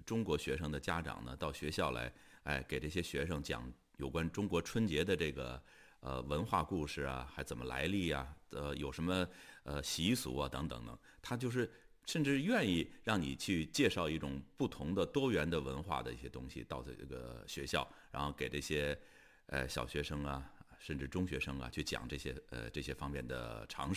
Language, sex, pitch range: Chinese, male, 65-85 Hz